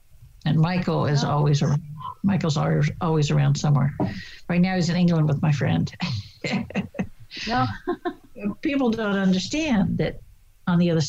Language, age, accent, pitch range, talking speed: English, 60-79, American, 145-175 Hz, 135 wpm